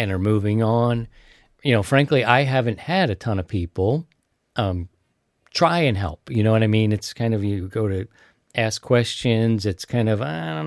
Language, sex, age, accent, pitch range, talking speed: English, male, 40-59, American, 105-140 Hz, 200 wpm